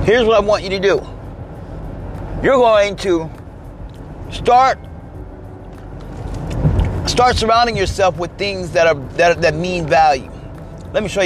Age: 30-49